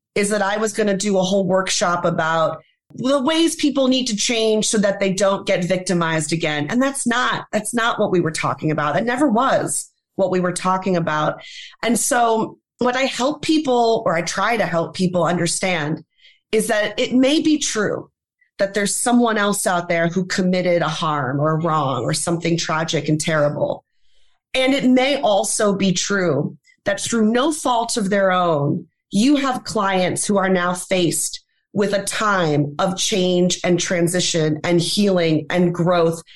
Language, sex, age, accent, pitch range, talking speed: English, female, 30-49, American, 170-225 Hz, 180 wpm